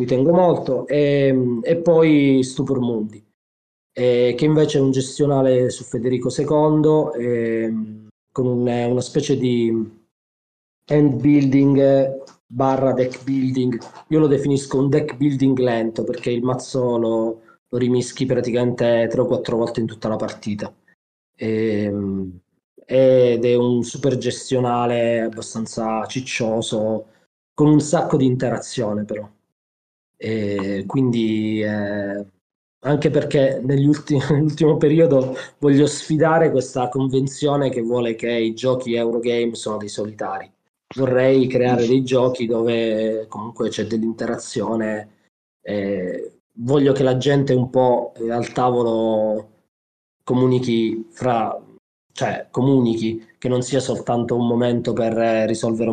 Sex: male